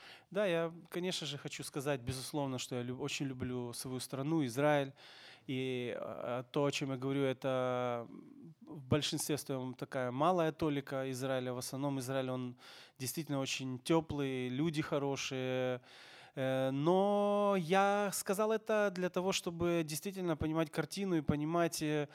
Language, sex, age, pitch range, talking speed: Ukrainian, male, 20-39, 135-175 Hz, 135 wpm